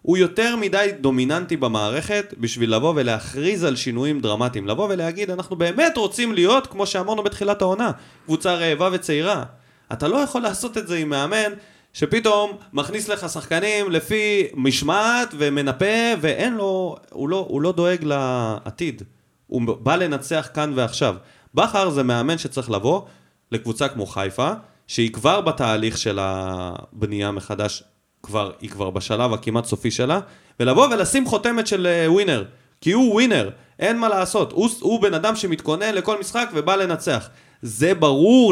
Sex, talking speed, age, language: male, 150 wpm, 30-49, Hebrew